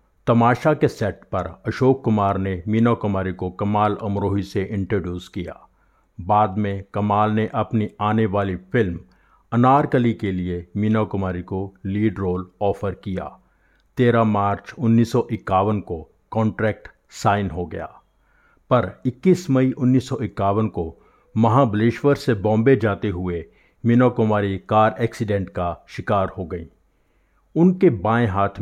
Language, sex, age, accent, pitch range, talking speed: Hindi, male, 50-69, native, 95-115 Hz, 130 wpm